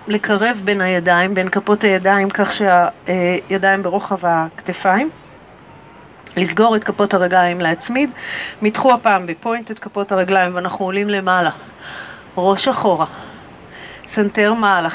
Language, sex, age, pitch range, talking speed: Hebrew, female, 40-59, 185-220 Hz, 110 wpm